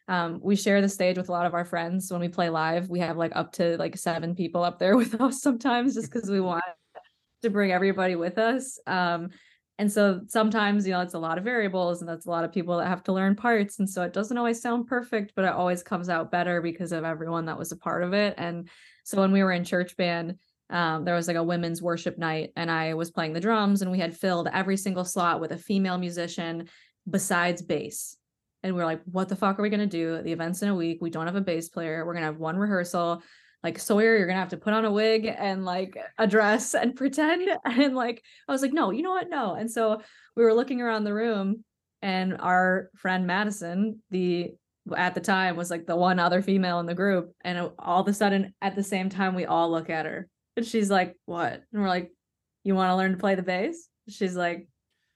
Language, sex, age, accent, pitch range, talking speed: English, female, 20-39, American, 175-210 Hz, 250 wpm